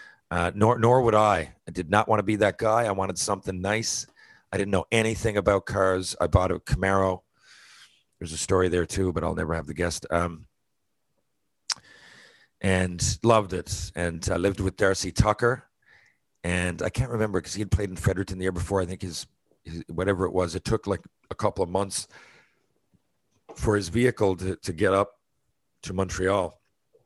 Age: 40-59